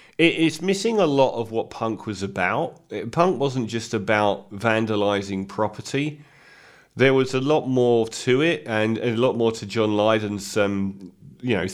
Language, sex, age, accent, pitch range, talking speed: English, male, 40-59, British, 100-130 Hz, 165 wpm